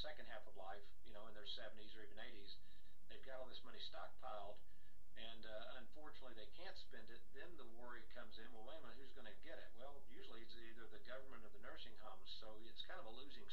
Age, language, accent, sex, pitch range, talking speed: 50-69, English, American, male, 105-130 Hz, 245 wpm